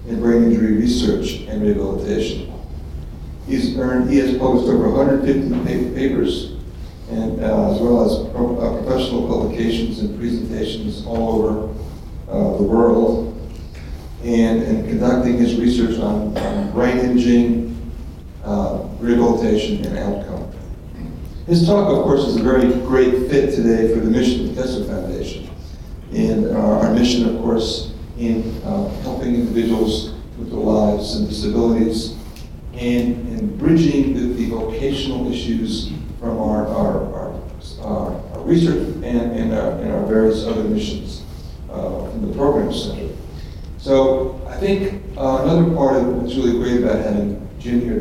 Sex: male